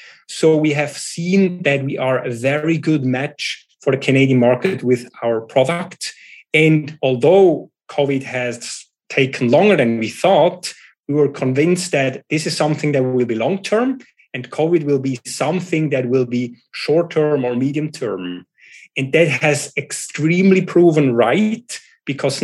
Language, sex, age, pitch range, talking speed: English, male, 30-49, 130-170 Hz, 150 wpm